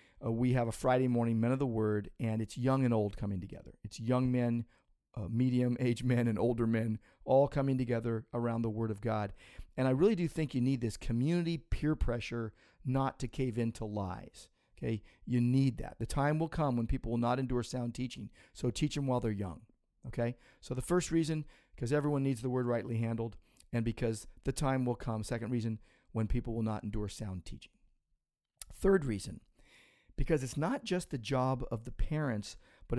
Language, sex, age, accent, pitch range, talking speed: English, male, 40-59, American, 110-130 Hz, 200 wpm